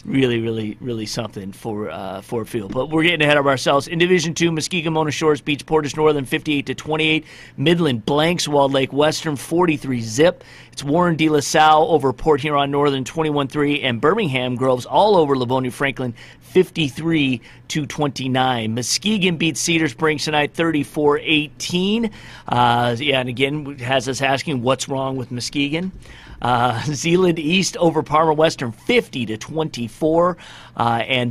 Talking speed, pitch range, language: 145 wpm, 130-160 Hz, English